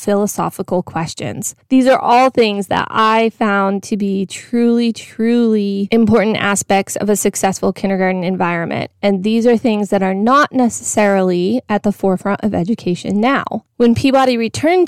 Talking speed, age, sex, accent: 150 wpm, 20-39, female, American